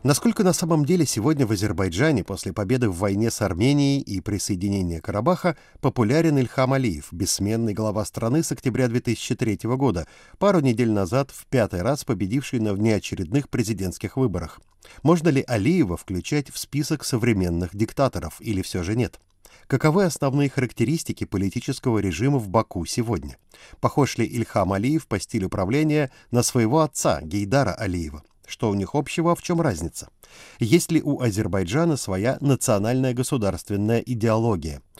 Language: Russian